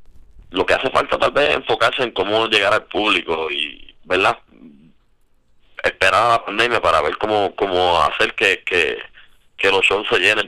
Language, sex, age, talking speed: Spanish, male, 30-49, 170 wpm